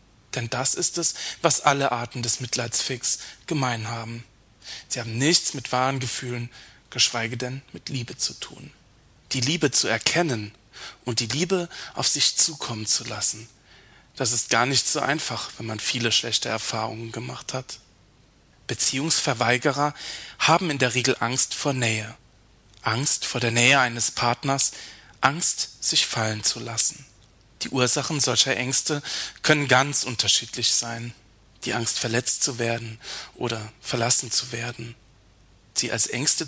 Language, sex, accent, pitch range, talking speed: German, male, German, 115-135 Hz, 145 wpm